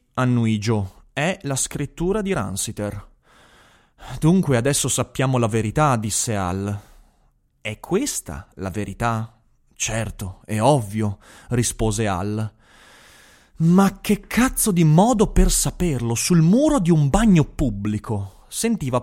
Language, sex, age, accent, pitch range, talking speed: Italian, male, 30-49, native, 105-155 Hz, 115 wpm